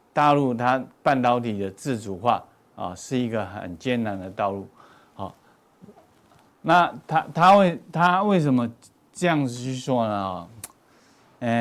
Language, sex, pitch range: Chinese, male, 105-135 Hz